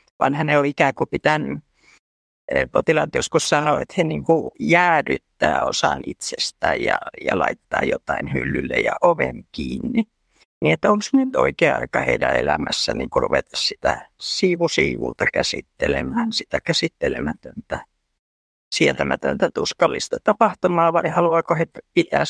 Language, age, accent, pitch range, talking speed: Finnish, 60-79, native, 165-210 Hz, 120 wpm